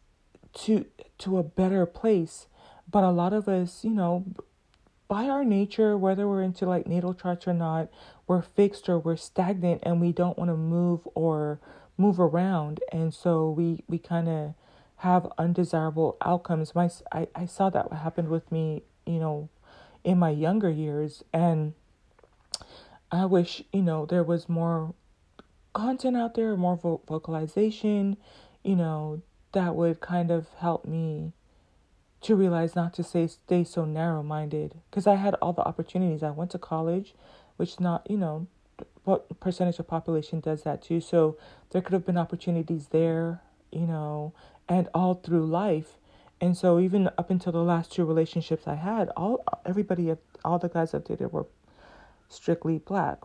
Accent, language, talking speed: American, English, 165 wpm